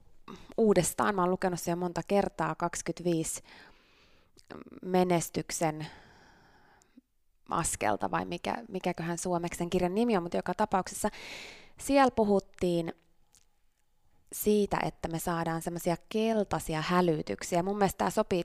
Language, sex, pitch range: Finnish, female, 165-190 Hz